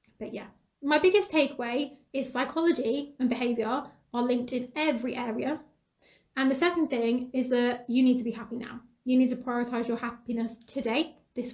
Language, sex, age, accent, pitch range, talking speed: English, female, 20-39, British, 230-265 Hz, 175 wpm